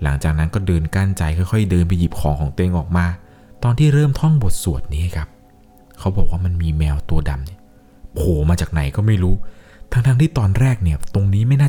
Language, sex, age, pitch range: Thai, male, 20-39, 85-110 Hz